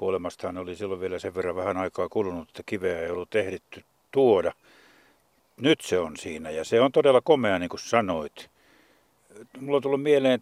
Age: 60-79